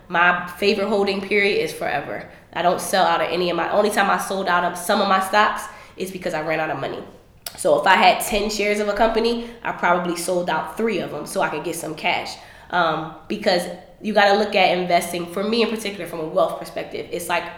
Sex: female